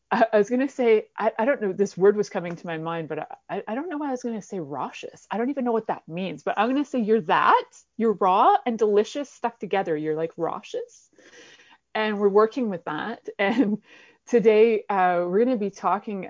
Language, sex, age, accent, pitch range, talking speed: English, female, 30-49, American, 170-240 Hz, 235 wpm